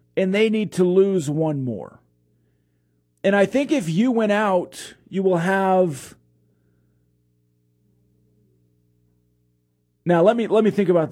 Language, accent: English, American